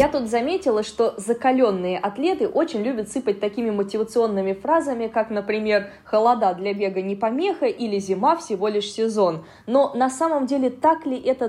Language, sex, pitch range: Russian, female, 195-260 Hz